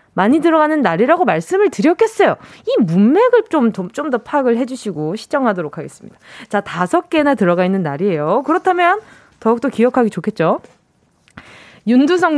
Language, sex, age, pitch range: Korean, female, 20-39, 205-330 Hz